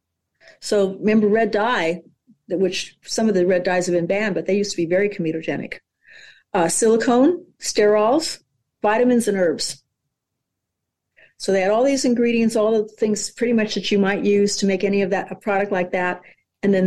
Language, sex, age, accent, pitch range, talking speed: English, female, 50-69, American, 185-225 Hz, 185 wpm